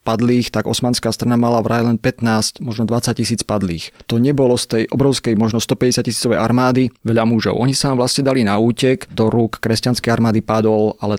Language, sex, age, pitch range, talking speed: Slovak, male, 30-49, 110-125 Hz, 175 wpm